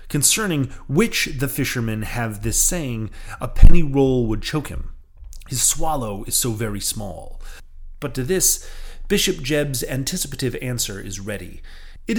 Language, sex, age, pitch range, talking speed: English, male, 30-49, 105-150 Hz, 145 wpm